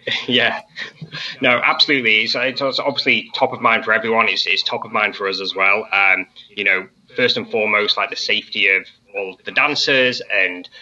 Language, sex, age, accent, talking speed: English, male, 20-39, British, 190 wpm